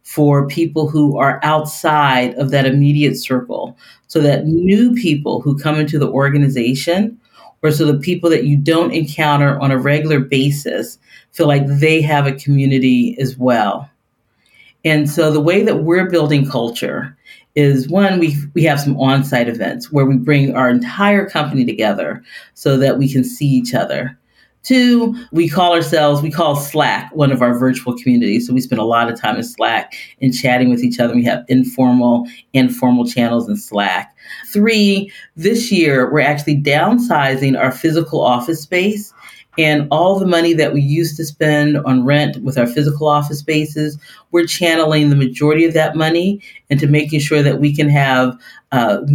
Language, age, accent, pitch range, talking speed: English, 40-59, American, 135-170 Hz, 175 wpm